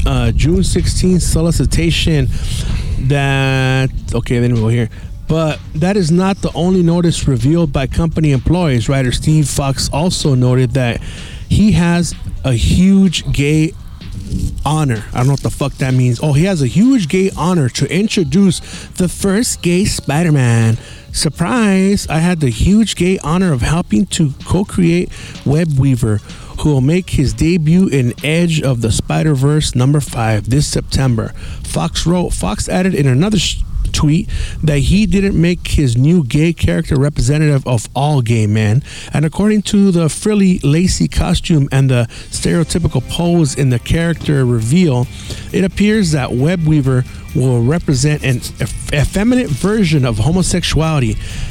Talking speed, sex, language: 150 wpm, male, English